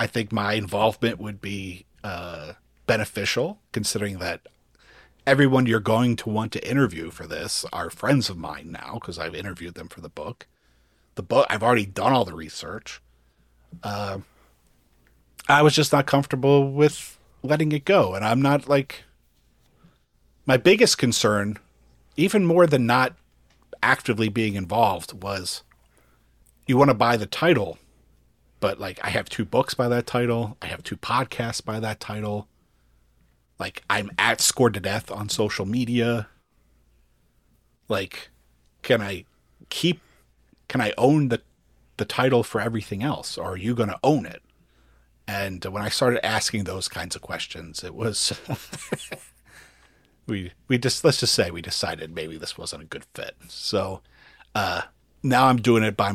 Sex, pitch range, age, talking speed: male, 80-125 Hz, 40-59, 155 wpm